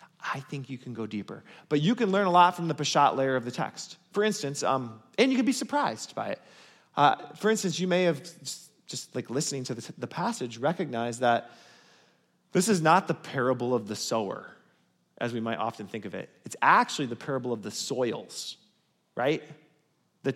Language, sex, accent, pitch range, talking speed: English, male, American, 135-210 Hz, 205 wpm